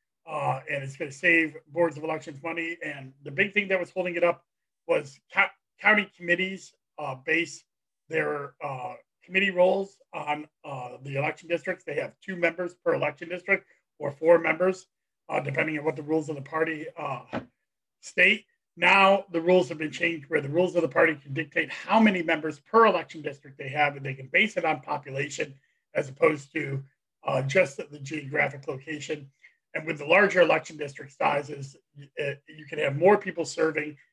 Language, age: English, 30-49